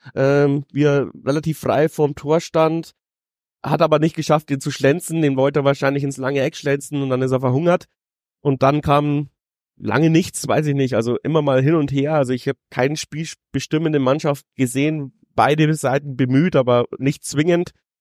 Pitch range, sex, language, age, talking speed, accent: 130-145 Hz, male, German, 30-49, 185 wpm, German